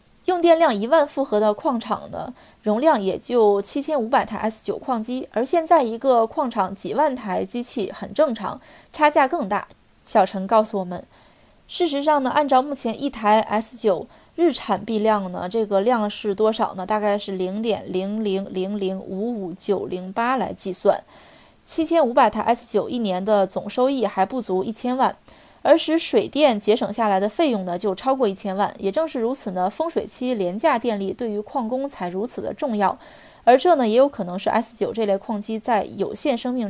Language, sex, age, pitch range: Chinese, female, 20-39, 205-280 Hz